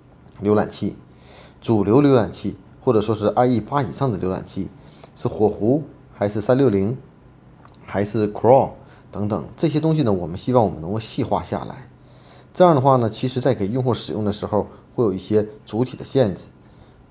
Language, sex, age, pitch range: Chinese, male, 30-49, 100-135 Hz